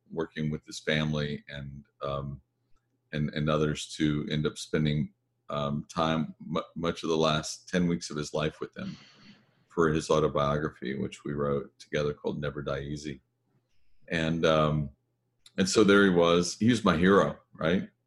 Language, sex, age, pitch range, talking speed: English, male, 40-59, 75-100 Hz, 160 wpm